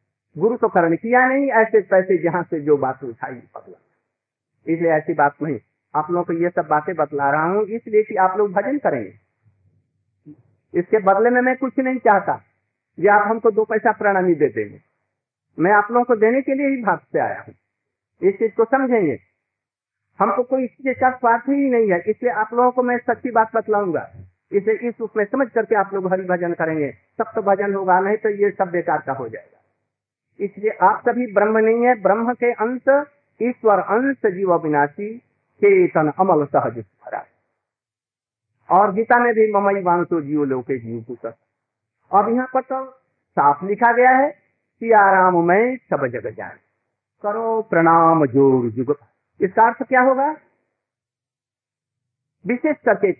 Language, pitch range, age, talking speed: Hindi, 140-235 Hz, 50-69, 170 wpm